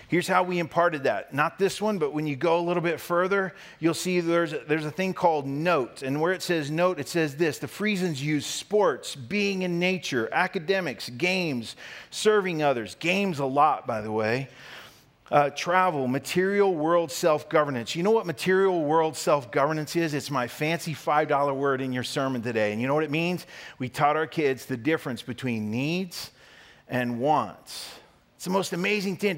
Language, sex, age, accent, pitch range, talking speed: English, male, 40-59, American, 135-180 Hz, 185 wpm